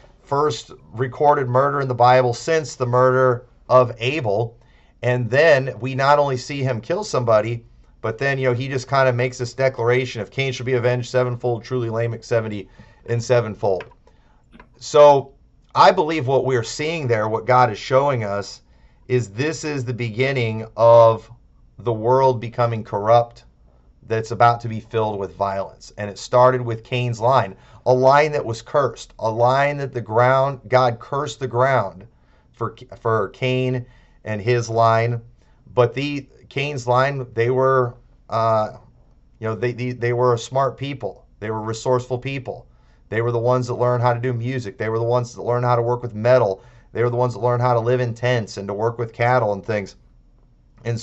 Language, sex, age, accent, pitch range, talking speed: English, male, 40-59, American, 115-130 Hz, 185 wpm